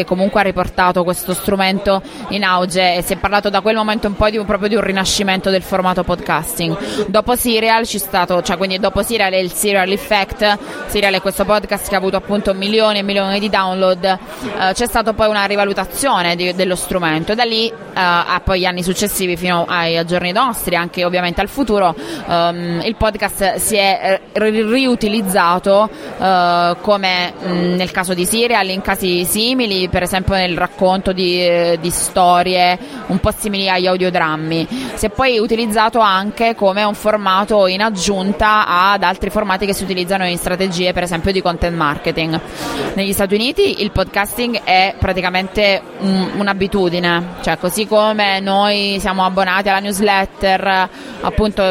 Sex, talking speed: female, 170 wpm